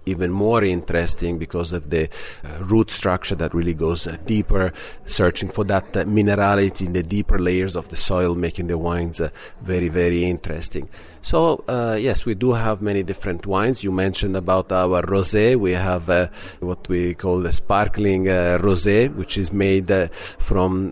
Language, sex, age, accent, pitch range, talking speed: English, male, 40-59, Italian, 90-105 Hz, 180 wpm